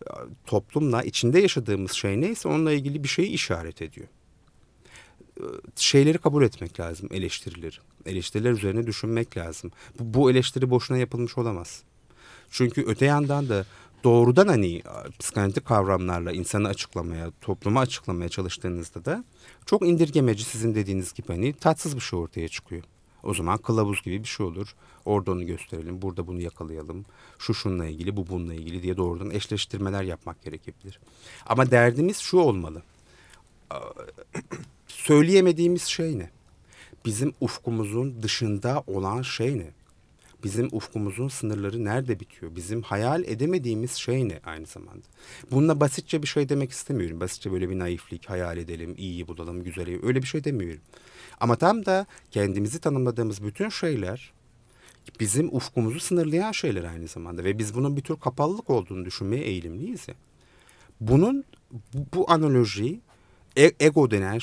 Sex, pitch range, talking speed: male, 90-135 Hz, 135 wpm